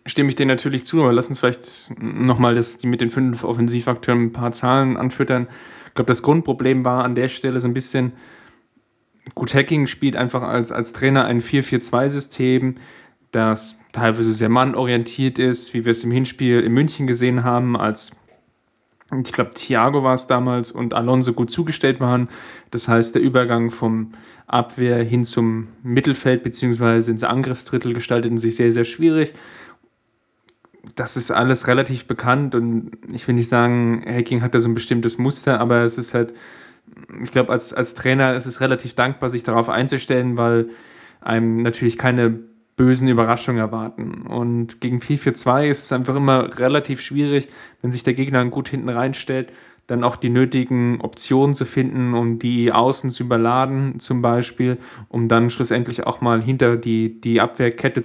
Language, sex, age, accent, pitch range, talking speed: German, male, 10-29, German, 120-130 Hz, 165 wpm